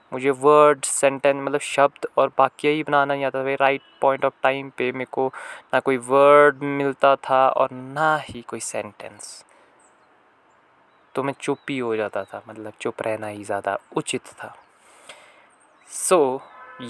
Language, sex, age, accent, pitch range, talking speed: Hindi, male, 20-39, native, 115-140 Hz, 155 wpm